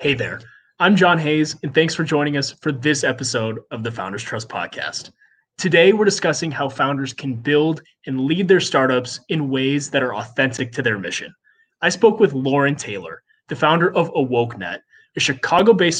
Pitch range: 125-170 Hz